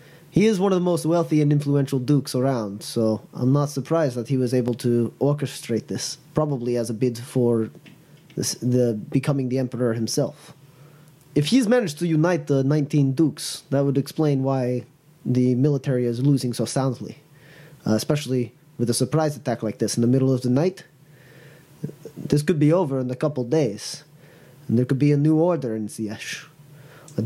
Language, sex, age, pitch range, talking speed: English, male, 20-39, 130-160 Hz, 185 wpm